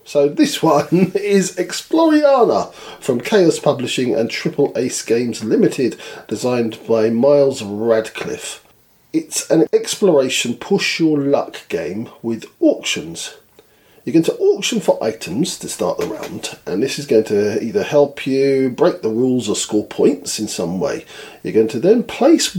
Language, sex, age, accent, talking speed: English, male, 40-59, British, 155 wpm